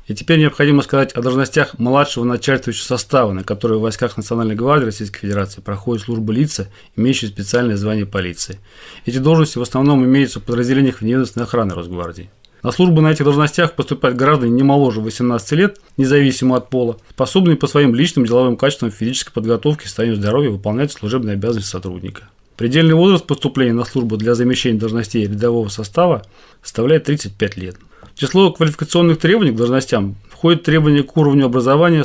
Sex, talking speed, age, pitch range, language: male, 165 wpm, 30-49, 110-140 Hz, Russian